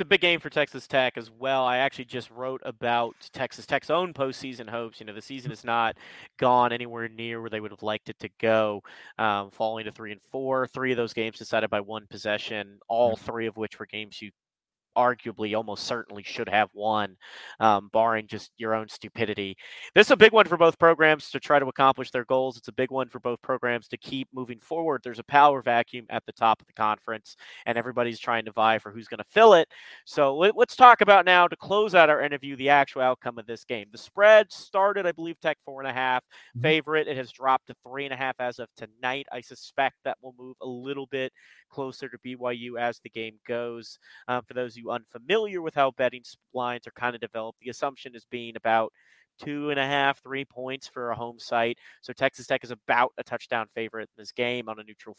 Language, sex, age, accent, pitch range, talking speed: English, male, 30-49, American, 115-140 Hz, 225 wpm